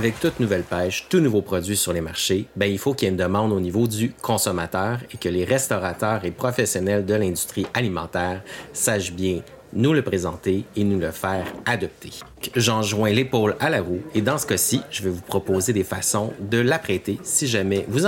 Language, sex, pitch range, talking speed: French, male, 95-120 Hz, 200 wpm